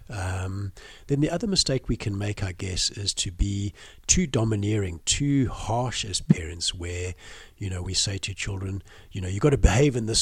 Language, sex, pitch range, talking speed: English, male, 90-115 Hz, 200 wpm